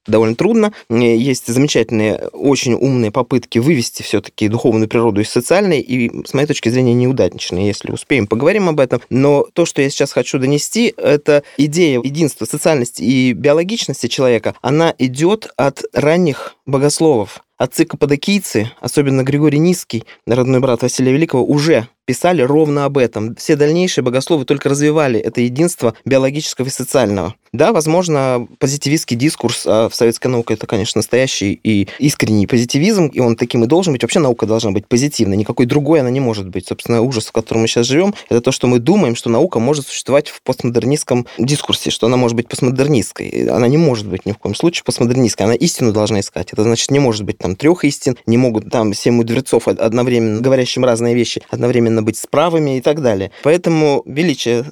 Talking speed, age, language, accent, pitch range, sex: 175 wpm, 20-39, Russian, native, 115-150 Hz, male